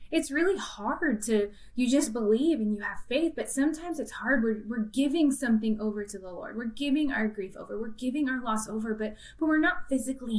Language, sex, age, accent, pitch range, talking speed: English, female, 20-39, American, 220-285 Hz, 220 wpm